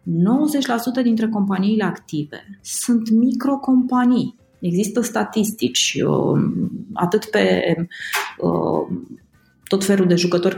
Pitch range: 165-220 Hz